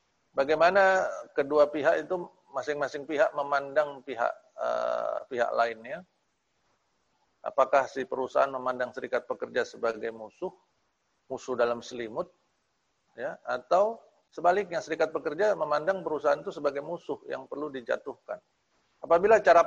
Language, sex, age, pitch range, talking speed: Indonesian, male, 40-59, 125-200 Hz, 115 wpm